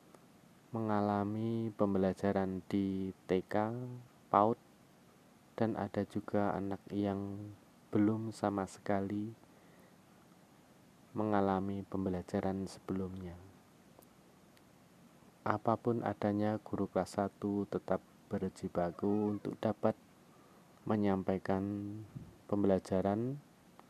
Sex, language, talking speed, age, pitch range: male, Indonesian, 70 wpm, 20-39, 95-110 Hz